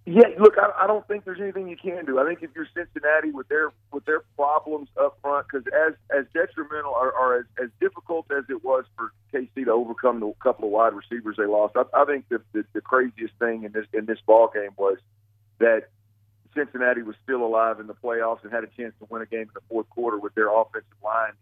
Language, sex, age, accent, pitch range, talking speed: English, male, 50-69, American, 115-150 Hz, 240 wpm